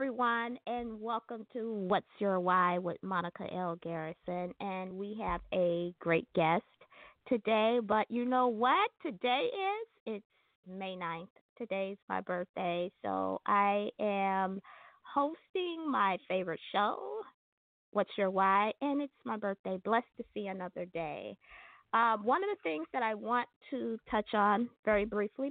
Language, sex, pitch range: English, female, 185-240 Hz